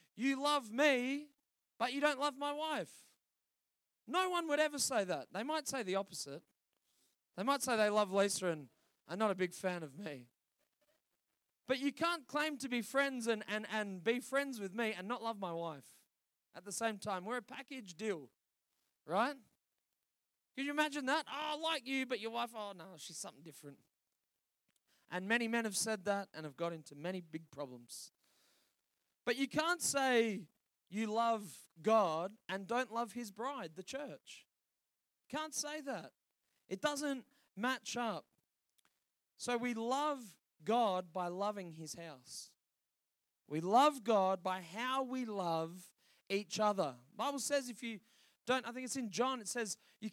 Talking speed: 170 wpm